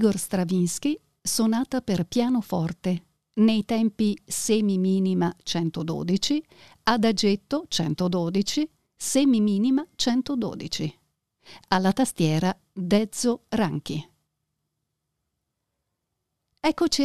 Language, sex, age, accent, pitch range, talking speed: Italian, female, 50-69, native, 180-240 Hz, 65 wpm